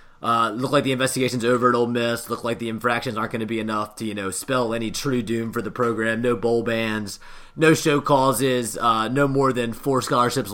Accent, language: American, English